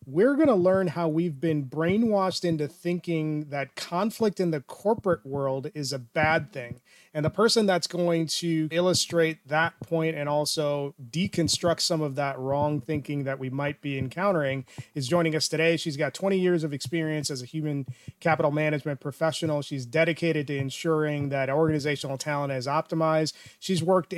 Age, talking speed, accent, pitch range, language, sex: 30-49, 170 wpm, American, 145-175 Hz, English, male